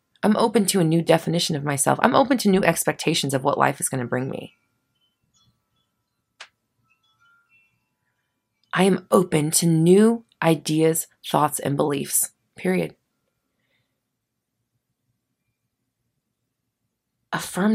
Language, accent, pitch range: English, American, 150-210 Hz